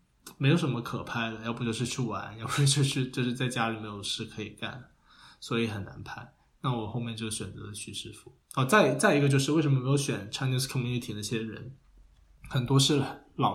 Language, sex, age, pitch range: Chinese, male, 10-29, 110-130 Hz